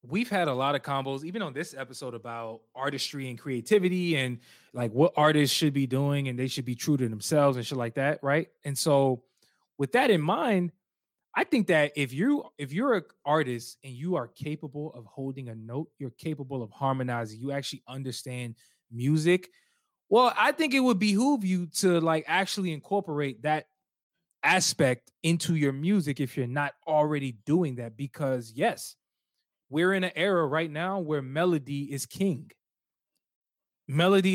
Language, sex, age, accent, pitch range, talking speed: English, male, 20-39, American, 130-170 Hz, 175 wpm